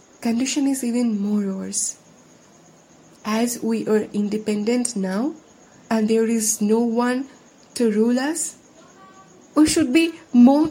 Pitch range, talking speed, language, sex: 220-290 Hz, 125 wpm, Hindi, female